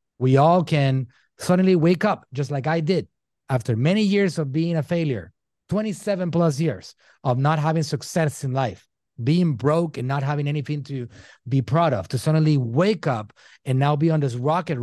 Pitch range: 120-155 Hz